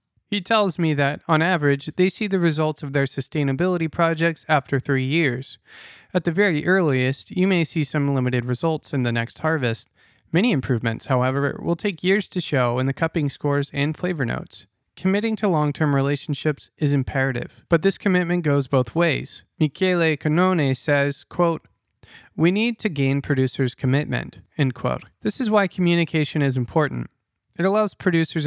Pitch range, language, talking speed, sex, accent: 135-170 Hz, English, 165 wpm, male, American